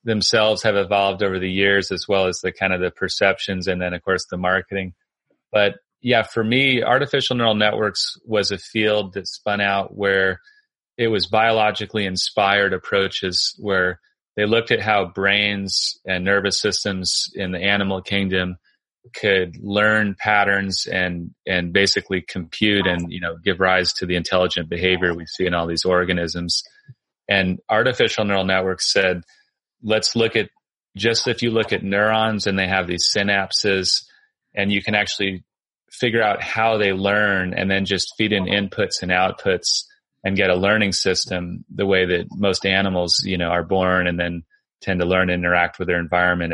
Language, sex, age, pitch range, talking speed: English, male, 30-49, 90-105 Hz, 175 wpm